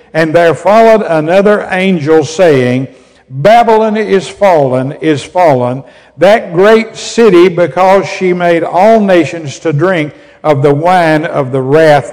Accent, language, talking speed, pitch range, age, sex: American, English, 135 wpm, 140-180 Hz, 60-79, male